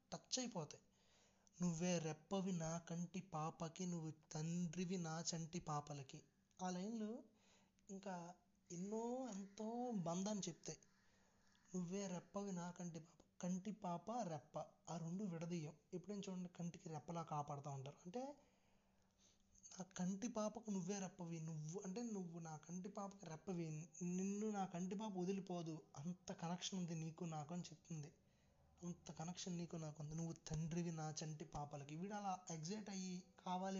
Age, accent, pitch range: 20-39, native, 165-195 Hz